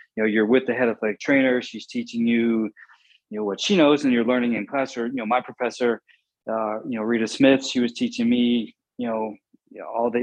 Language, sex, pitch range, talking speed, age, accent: English, male, 115-135 Hz, 240 wpm, 20-39, American